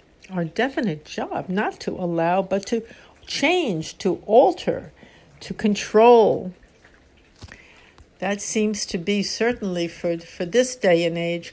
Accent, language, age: American, English, 60-79